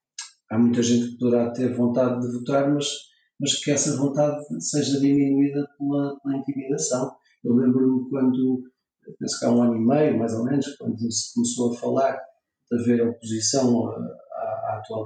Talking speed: 175 wpm